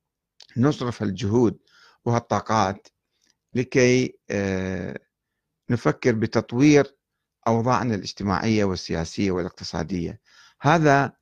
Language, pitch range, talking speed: Arabic, 115-160 Hz, 60 wpm